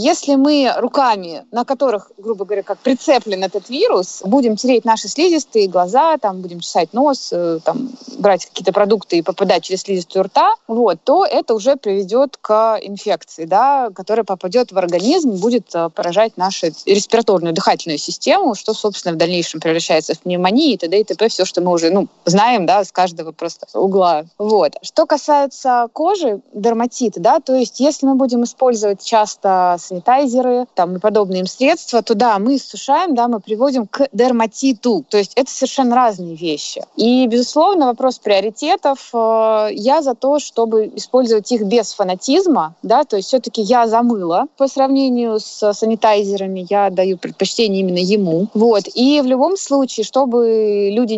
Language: Russian